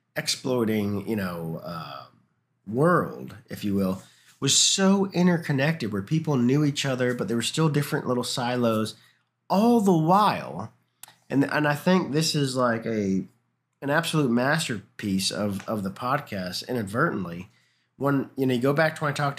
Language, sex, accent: English, male, American